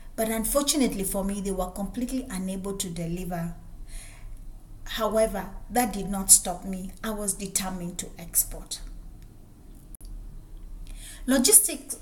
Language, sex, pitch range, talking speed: English, female, 170-220 Hz, 110 wpm